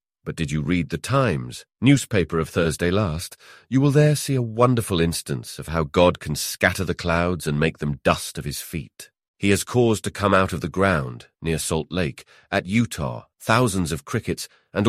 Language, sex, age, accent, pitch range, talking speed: English, male, 40-59, British, 80-105 Hz, 200 wpm